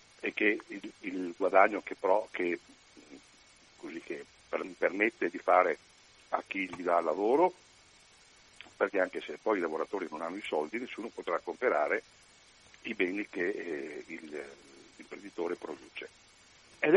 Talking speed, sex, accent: 140 wpm, male, native